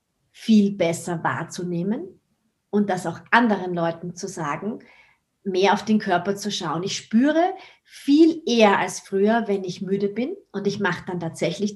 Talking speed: 160 wpm